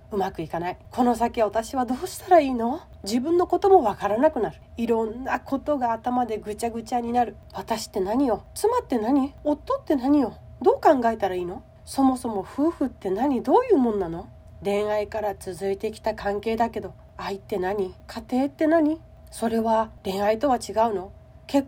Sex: female